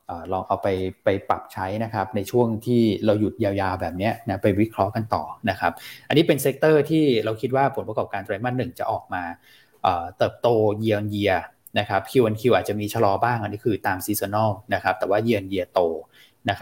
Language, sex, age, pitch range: Thai, male, 20-39, 100-125 Hz